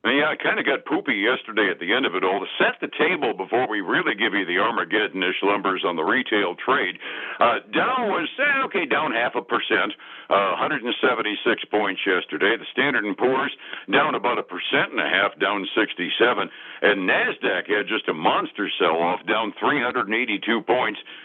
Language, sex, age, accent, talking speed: English, male, 60-79, American, 185 wpm